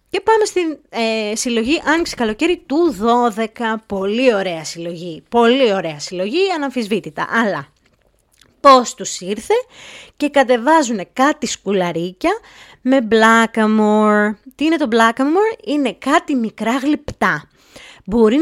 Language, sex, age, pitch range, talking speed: Greek, female, 20-39, 220-285 Hz, 115 wpm